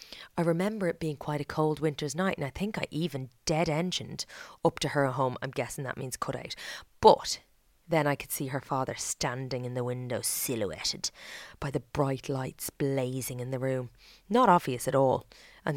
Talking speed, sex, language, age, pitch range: 190 wpm, female, English, 20-39, 145-200 Hz